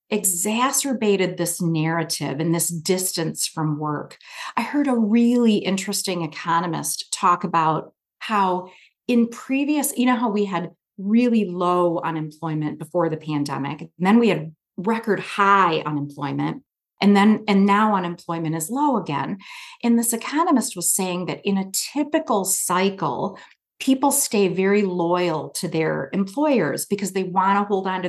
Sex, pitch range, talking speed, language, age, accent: female, 170-225 Hz, 145 wpm, English, 40-59, American